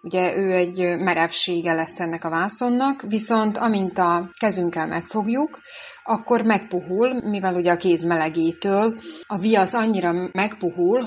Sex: female